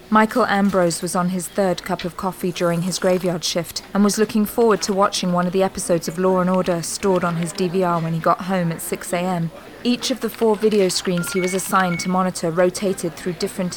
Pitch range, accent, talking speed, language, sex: 175-195 Hz, British, 220 wpm, English, female